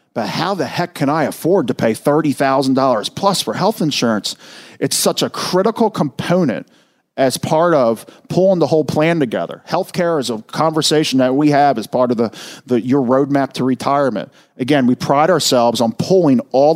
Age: 40-59